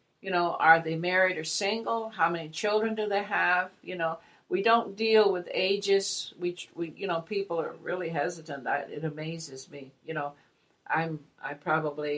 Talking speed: 180 wpm